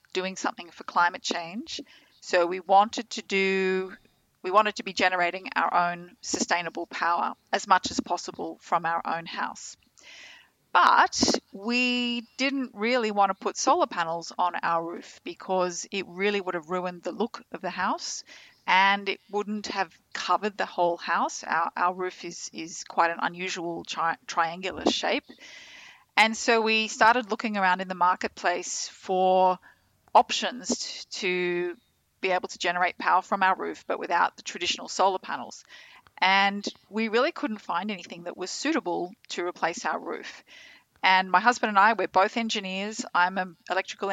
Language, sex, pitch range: English, female, 180-220 Hz